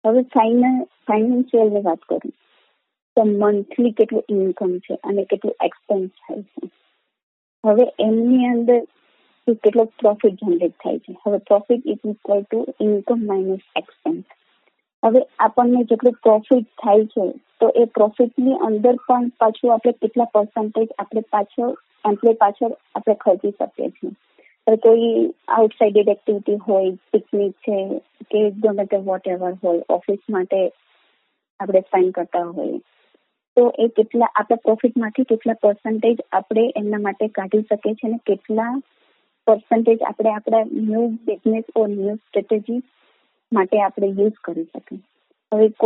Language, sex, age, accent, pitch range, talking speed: English, female, 20-39, Indian, 200-230 Hz, 70 wpm